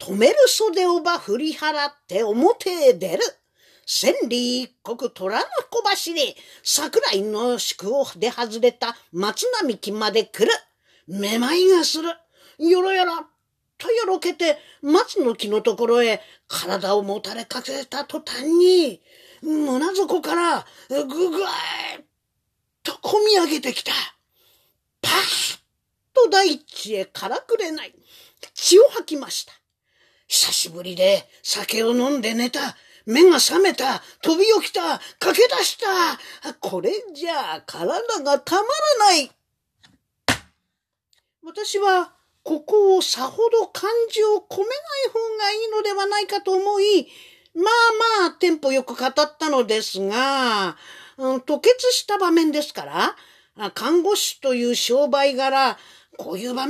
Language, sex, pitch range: Japanese, female, 255-400 Hz